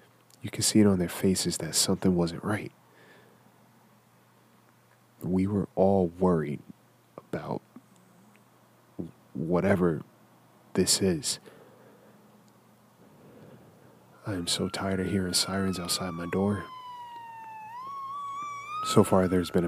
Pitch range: 85-110 Hz